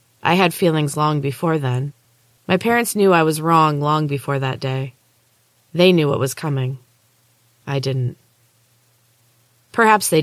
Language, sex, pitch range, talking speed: English, female, 125-160 Hz, 145 wpm